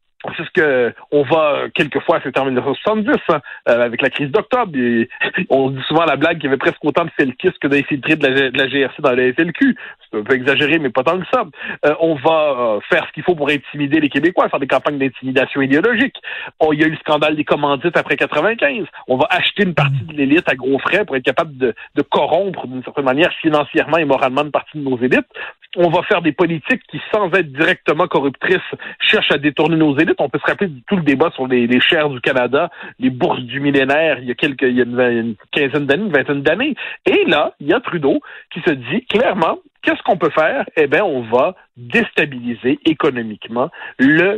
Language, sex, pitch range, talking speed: French, male, 135-180 Hz, 230 wpm